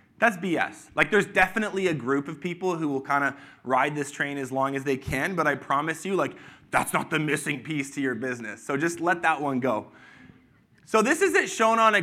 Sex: male